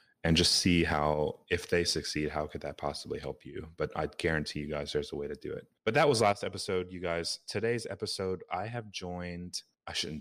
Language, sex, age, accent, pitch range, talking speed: English, male, 30-49, American, 75-95 Hz, 225 wpm